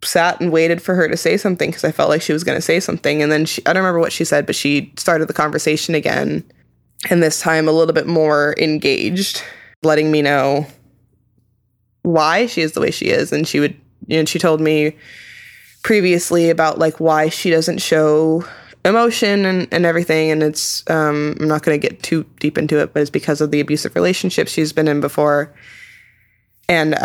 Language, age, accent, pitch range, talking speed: English, 20-39, American, 150-170 Hz, 210 wpm